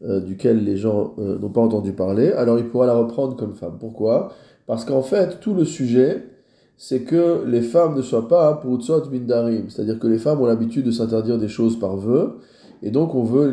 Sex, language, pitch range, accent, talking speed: male, French, 110-130 Hz, French, 225 wpm